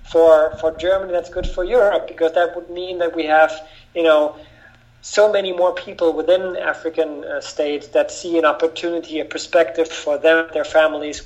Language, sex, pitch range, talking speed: English, male, 140-165 Hz, 180 wpm